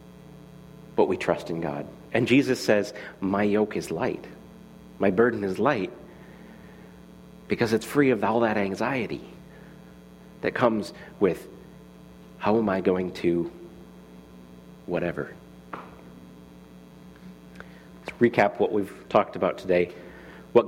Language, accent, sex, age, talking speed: English, American, male, 40-59, 115 wpm